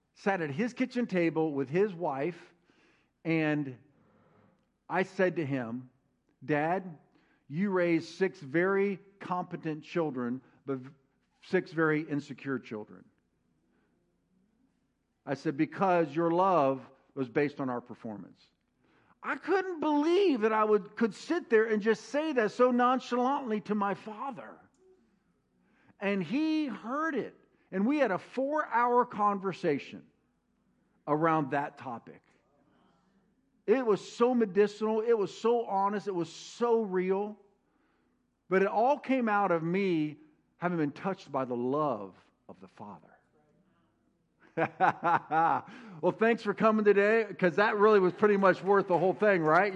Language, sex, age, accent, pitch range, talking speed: English, male, 50-69, American, 155-215 Hz, 135 wpm